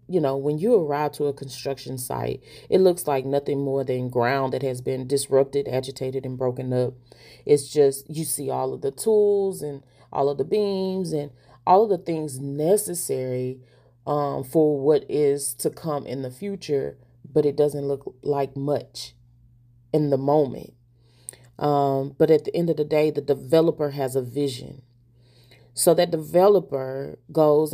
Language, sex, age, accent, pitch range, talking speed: English, female, 30-49, American, 130-155 Hz, 170 wpm